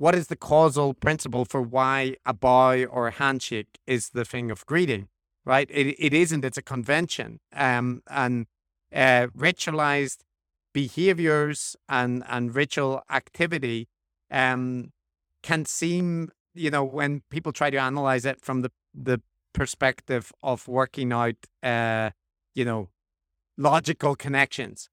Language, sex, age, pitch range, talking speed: English, male, 50-69, 120-150 Hz, 135 wpm